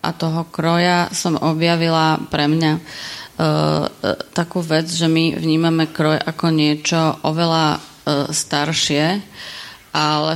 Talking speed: 115 wpm